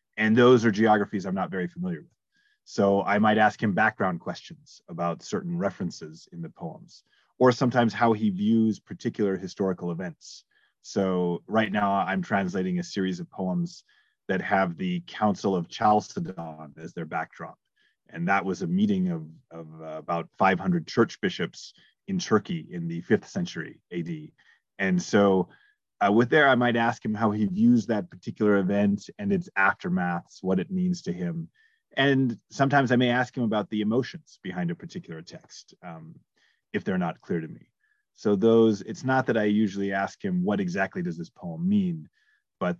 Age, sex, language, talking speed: 30-49, male, English, 175 wpm